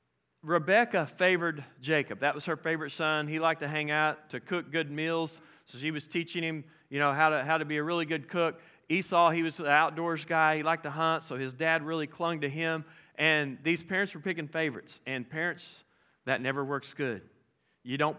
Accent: American